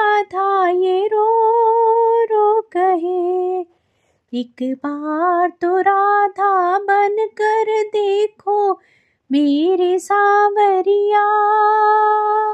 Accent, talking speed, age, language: native, 60 wpm, 30-49, Hindi